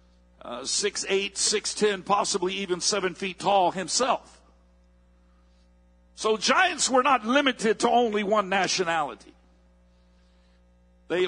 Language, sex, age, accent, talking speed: English, male, 50-69, American, 110 wpm